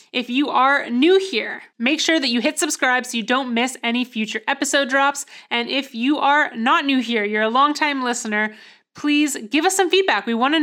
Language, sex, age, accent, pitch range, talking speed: English, female, 20-39, American, 225-280 Hz, 210 wpm